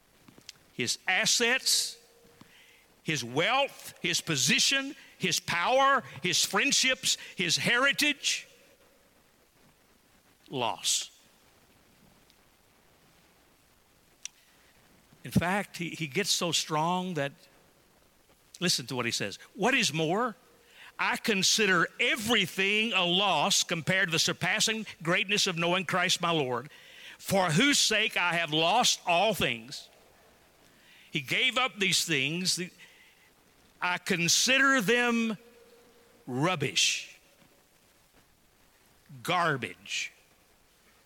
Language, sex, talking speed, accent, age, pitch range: English, male, 90 wpm, American, 50-69, 160-230 Hz